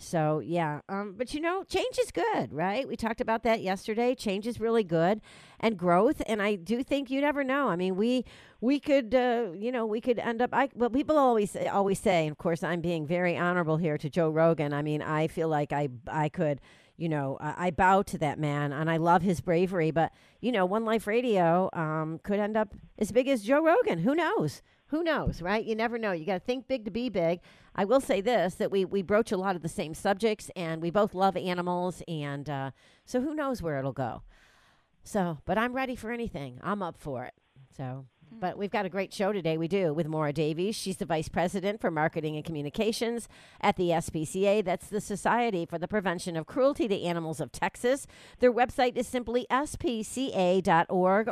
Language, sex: English, female